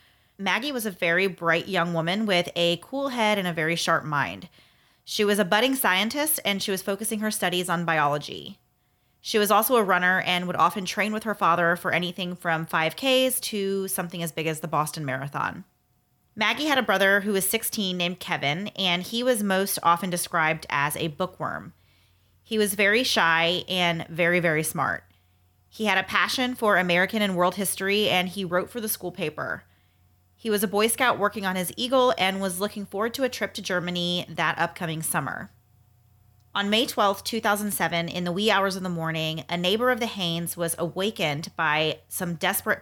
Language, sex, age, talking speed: English, female, 30-49, 195 wpm